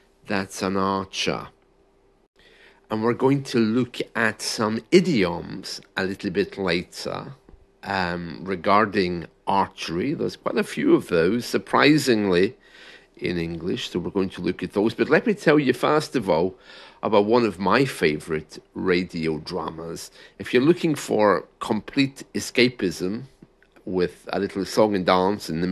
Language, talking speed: English, 145 wpm